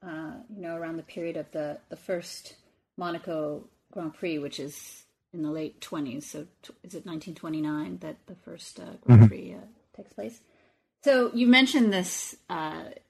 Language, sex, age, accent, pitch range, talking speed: English, female, 30-49, American, 155-210 Hz, 175 wpm